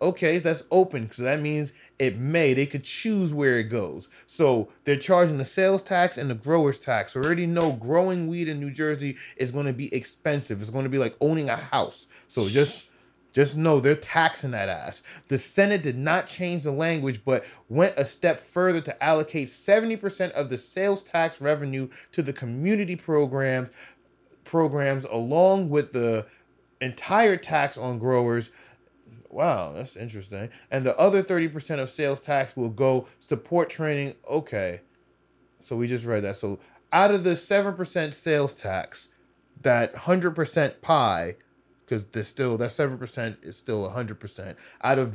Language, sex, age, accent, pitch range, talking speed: English, male, 20-39, American, 125-165 Hz, 165 wpm